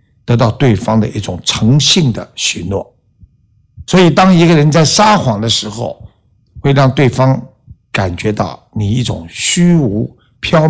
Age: 60-79